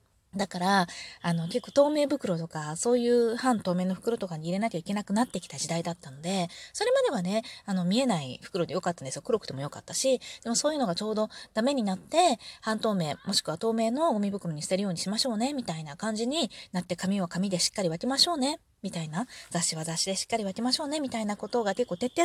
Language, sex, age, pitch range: Japanese, female, 20-39, 175-250 Hz